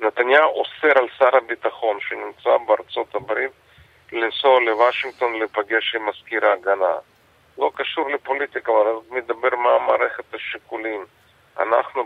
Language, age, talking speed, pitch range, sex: Hebrew, 40-59, 115 wpm, 110-125 Hz, male